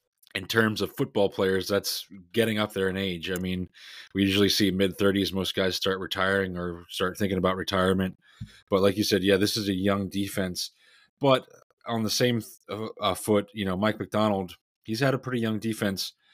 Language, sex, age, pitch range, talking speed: English, male, 20-39, 95-105 Hz, 190 wpm